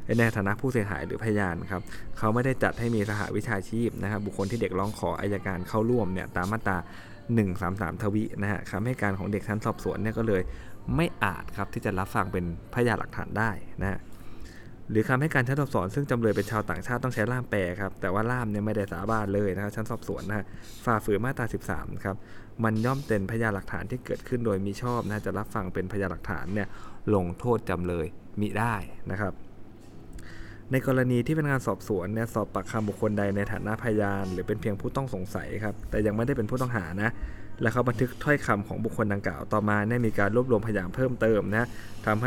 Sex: male